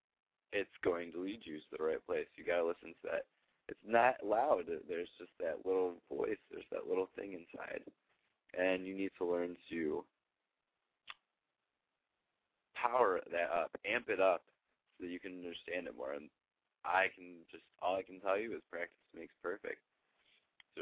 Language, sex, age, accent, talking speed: English, male, 20-39, American, 175 wpm